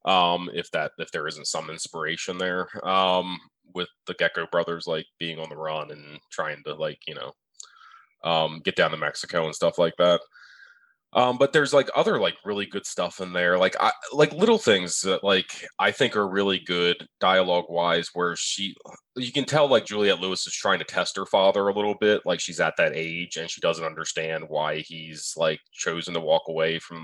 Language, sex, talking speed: English, male, 205 wpm